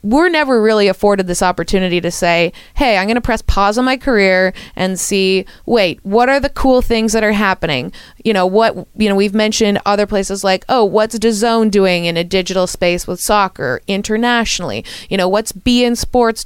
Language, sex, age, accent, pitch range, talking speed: English, female, 20-39, American, 185-230 Hz, 195 wpm